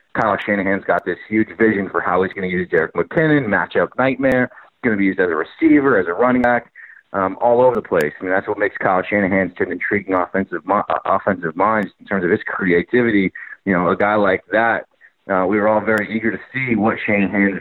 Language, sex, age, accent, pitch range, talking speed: English, male, 30-49, American, 95-115 Hz, 225 wpm